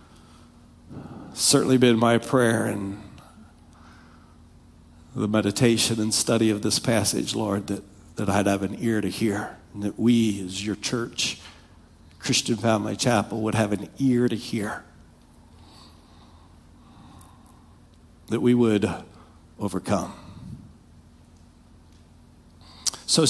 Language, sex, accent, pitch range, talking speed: English, male, American, 85-135 Hz, 105 wpm